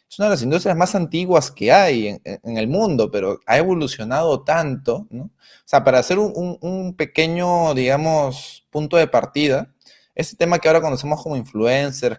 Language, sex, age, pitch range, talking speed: Spanish, male, 30-49, 130-165 Hz, 180 wpm